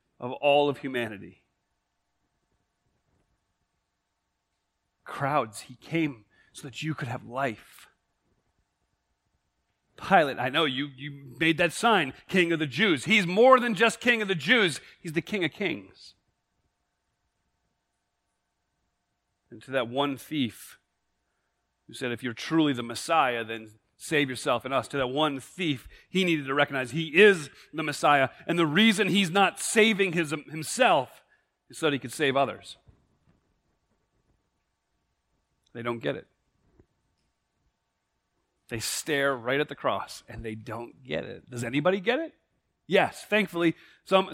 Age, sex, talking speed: 40-59, male, 140 wpm